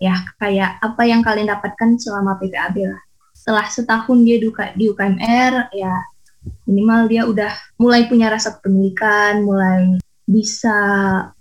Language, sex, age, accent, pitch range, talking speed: Indonesian, female, 20-39, native, 195-235 Hz, 125 wpm